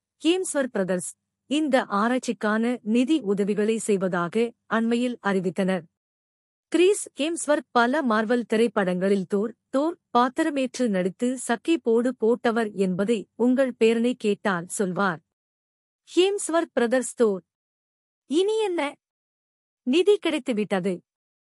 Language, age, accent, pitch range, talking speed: Tamil, 50-69, native, 200-260 Hz, 90 wpm